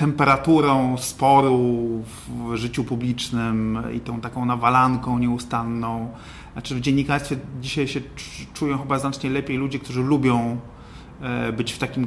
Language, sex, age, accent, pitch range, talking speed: Polish, male, 30-49, native, 115-150 Hz, 125 wpm